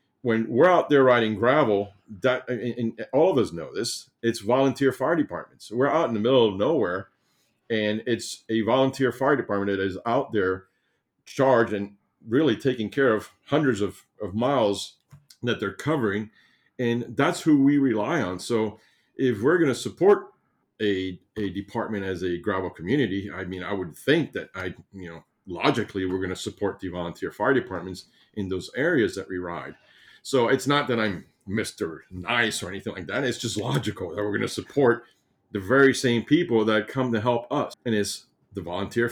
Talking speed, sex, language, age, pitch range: 190 wpm, male, English, 50-69, 95-130 Hz